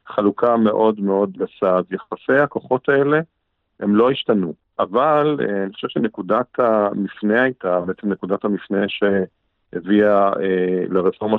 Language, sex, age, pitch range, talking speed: Hebrew, male, 50-69, 95-110 Hz, 120 wpm